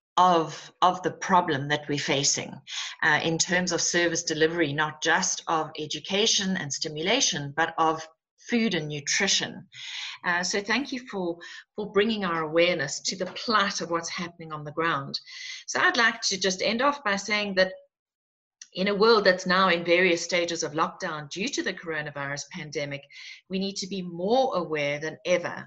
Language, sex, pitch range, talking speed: English, female, 155-195 Hz, 175 wpm